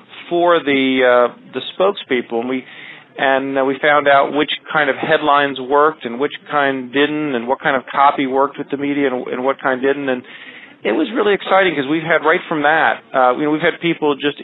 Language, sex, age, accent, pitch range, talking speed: English, male, 40-59, American, 125-145 Hz, 220 wpm